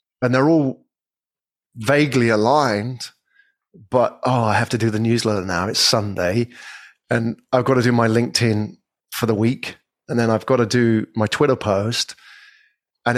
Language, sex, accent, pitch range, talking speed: English, male, British, 110-130 Hz, 165 wpm